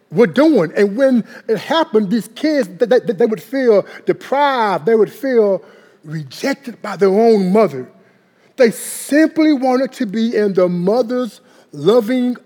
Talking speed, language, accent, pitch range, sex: 150 wpm, English, American, 160-230 Hz, male